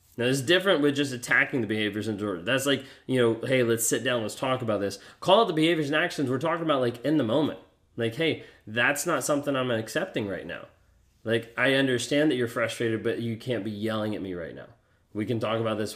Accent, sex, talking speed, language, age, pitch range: American, male, 245 wpm, English, 20-39, 110-135 Hz